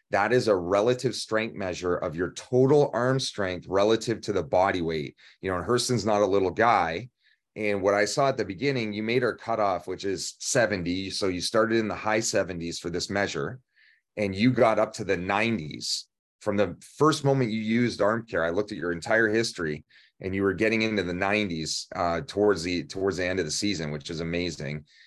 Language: English